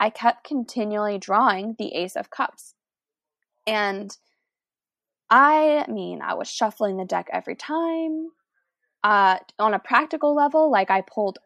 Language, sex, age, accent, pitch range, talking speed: English, female, 10-29, American, 200-260 Hz, 135 wpm